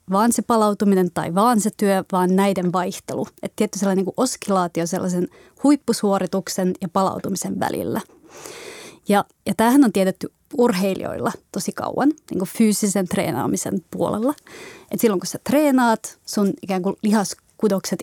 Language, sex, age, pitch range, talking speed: Finnish, female, 30-49, 185-225 Hz, 140 wpm